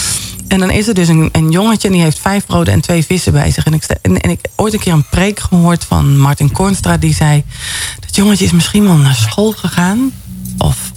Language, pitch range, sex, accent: Dutch, 160-210 Hz, female, Dutch